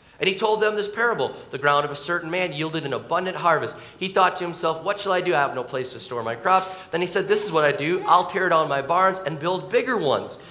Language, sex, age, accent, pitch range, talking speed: English, male, 30-49, American, 155-200 Hz, 280 wpm